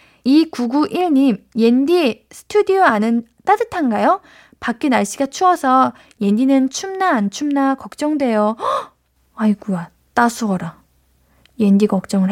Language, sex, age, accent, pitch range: Korean, female, 20-39, native, 210-280 Hz